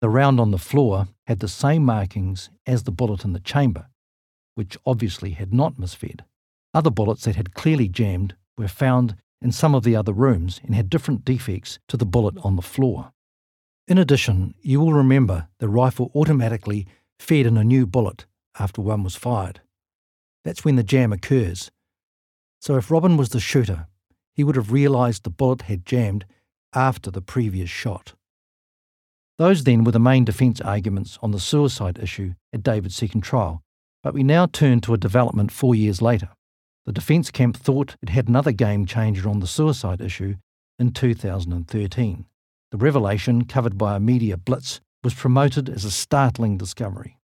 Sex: male